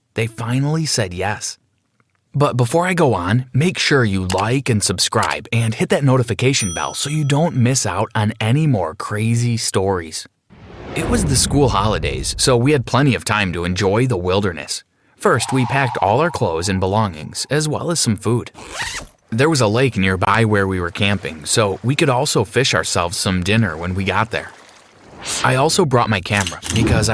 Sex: male